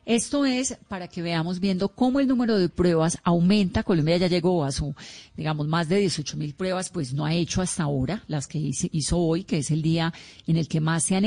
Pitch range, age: 155-185 Hz, 30-49